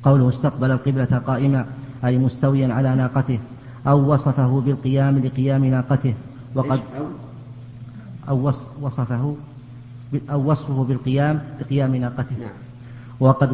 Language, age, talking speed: Arabic, 40-59, 95 wpm